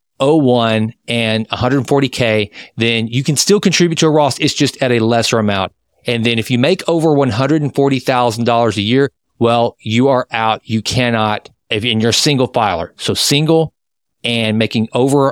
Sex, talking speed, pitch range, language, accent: male, 170 wpm, 110-140 Hz, English, American